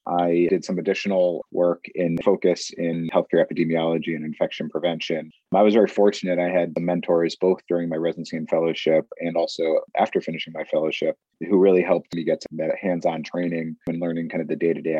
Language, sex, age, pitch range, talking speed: English, male, 30-49, 80-95 Hz, 190 wpm